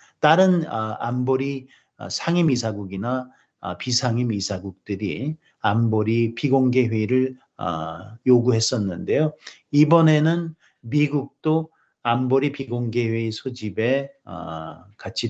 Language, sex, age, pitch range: Korean, male, 50-69, 100-140 Hz